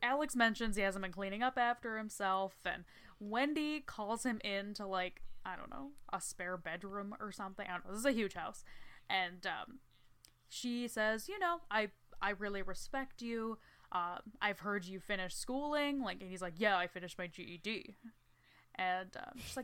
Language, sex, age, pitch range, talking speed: English, female, 10-29, 185-245 Hz, 185 wpm